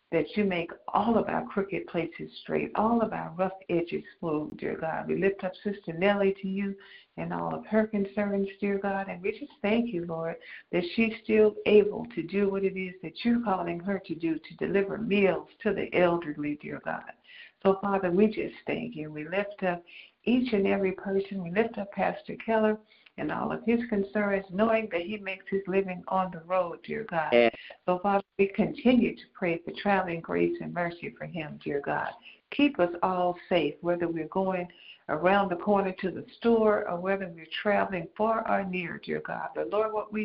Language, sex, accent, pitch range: English, female, American, 175-215 Hz